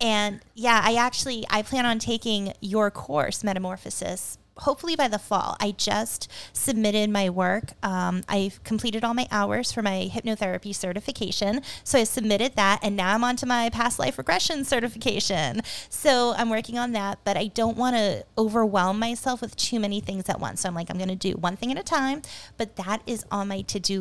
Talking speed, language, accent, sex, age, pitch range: 190 wpm, English, American, female, 20-39, 195-235 Hz